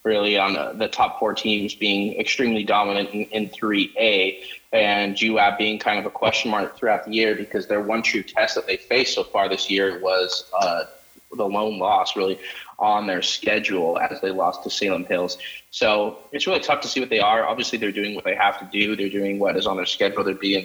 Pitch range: 95-110 Hz